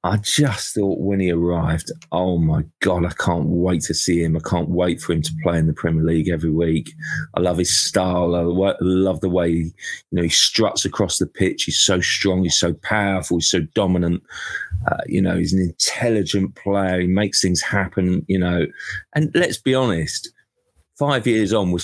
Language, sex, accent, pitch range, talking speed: English, male, British, 85-105 Hz, 200 wpm